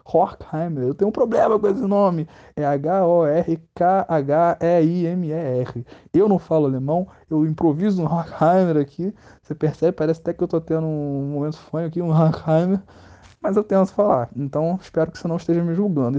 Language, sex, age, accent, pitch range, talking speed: Portuguese, male, 20-39, Brazilian, 150-190 Hz, 165 wpm